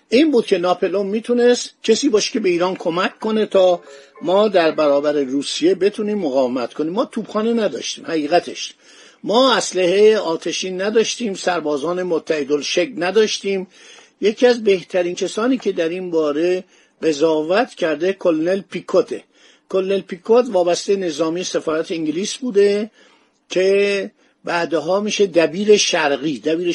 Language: Persian